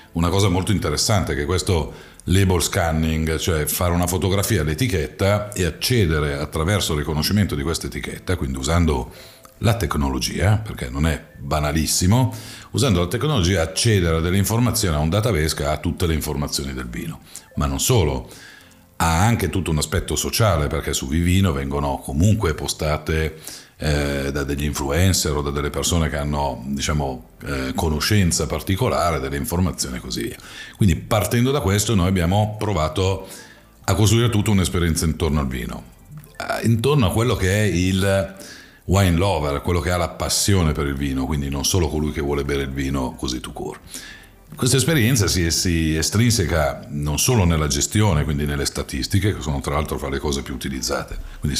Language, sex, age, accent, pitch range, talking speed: Italian, male, 50-69, native, 75-100 Hz, 165 wpm